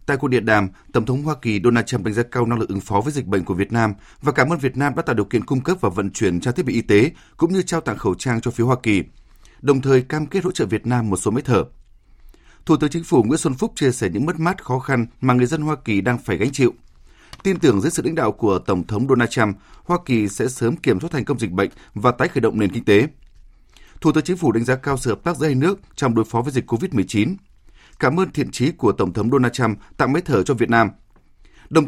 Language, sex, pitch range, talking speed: Vietnamese, male, 110-145 Hz, 280 wpm